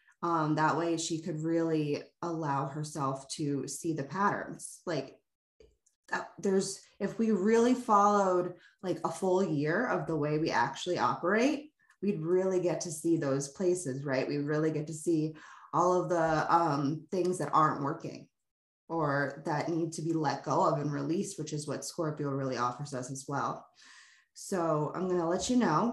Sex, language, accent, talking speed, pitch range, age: female, English, American, 175 wpm, 155-180 Hz, 20-39